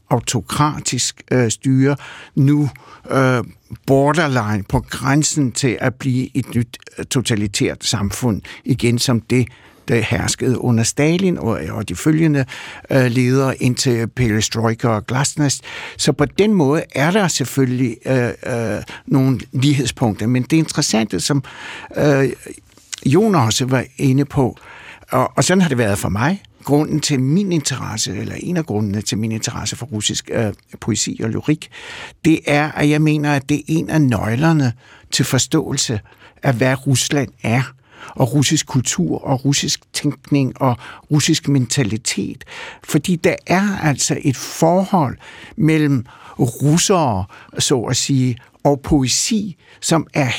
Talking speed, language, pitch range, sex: 135 wpm, Danish, 120-150 Hz, male